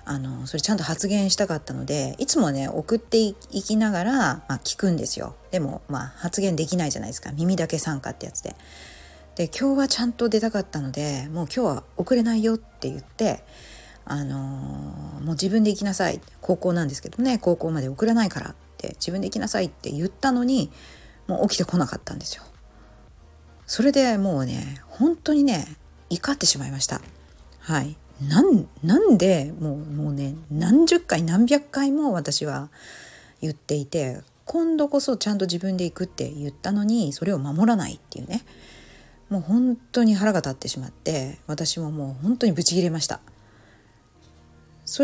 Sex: female